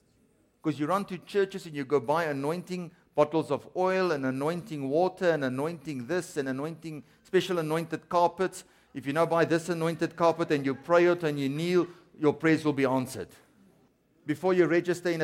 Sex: male